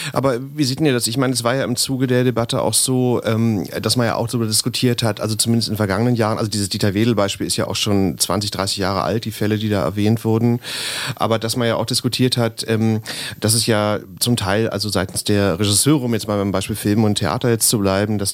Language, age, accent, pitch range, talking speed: German, 40-59, German, 105-115 Hz, 250 wpm